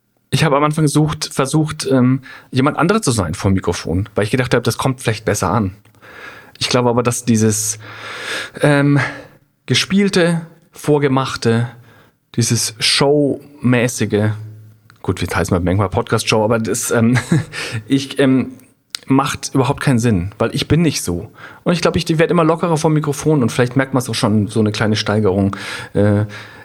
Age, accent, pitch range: 40-59, German, 110-145 Hz